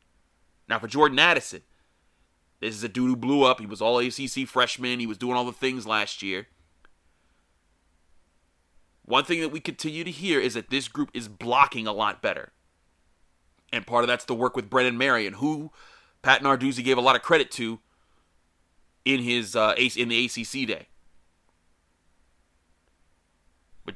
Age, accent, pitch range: 30-49, American, 95-130 Hz